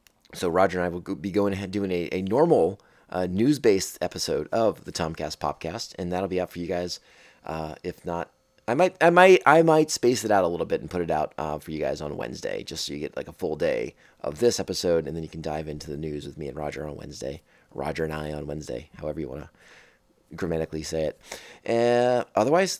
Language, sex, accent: English, male, American